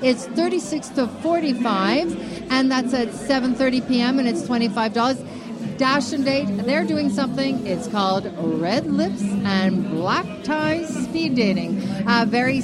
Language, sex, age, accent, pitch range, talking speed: English, female, 50-69, American, 225-270 Hz, 140 wpm